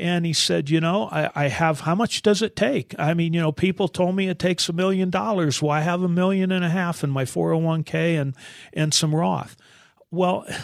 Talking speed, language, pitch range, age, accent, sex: 230 wpm, English, 145-175 Hz, 50-69, American, male